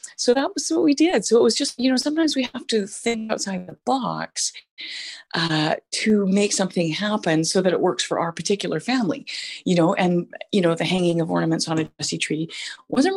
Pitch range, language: 165-235 Hz, English